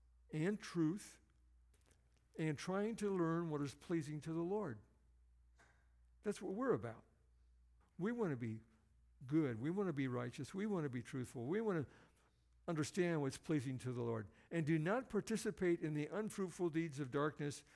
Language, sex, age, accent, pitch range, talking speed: English, male, 60-79, American, 110-160 Hz, 170 wpm